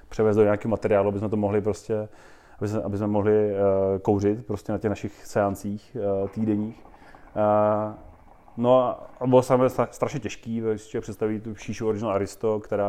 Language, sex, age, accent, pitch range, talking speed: Czech, male, 30-49, native, 100-115 Hz, 170 wpm